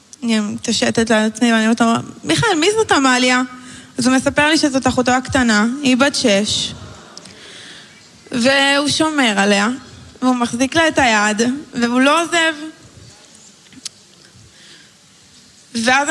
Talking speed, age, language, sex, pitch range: 120 wpm, 20-39, Hebrew, female, 240-300 Hz